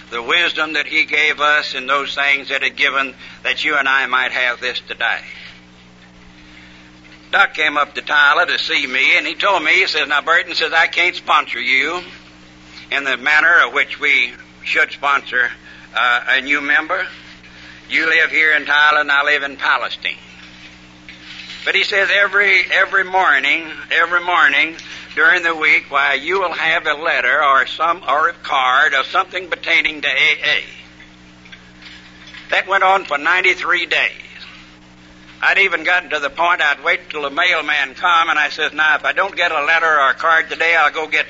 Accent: American